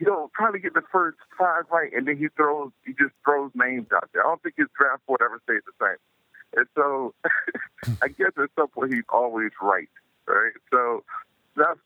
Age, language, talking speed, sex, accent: 50-69, English, 205 wpm, male, American